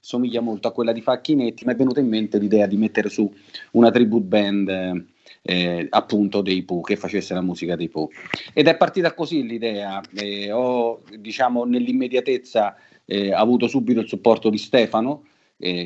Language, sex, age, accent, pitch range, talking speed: Italian, male, 40-59, native, 100-125 Hz, 170 wpm